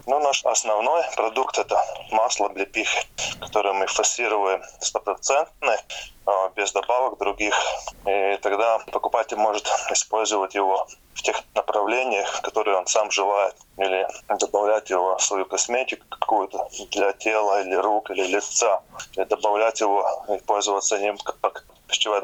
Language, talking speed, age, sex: Russian, 130 wpm, 20-39, male